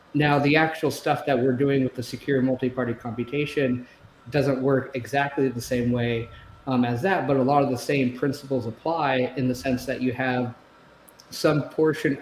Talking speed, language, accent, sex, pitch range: 180 wpm, English, American, male, 125-145 Hz